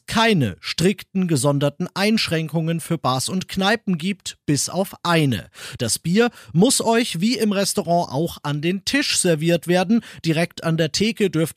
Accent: German